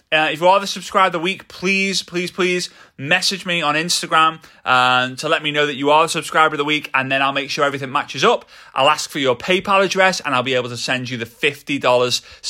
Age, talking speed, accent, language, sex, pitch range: 30-49, 250 wpm, British, English, male, 135-175 Hz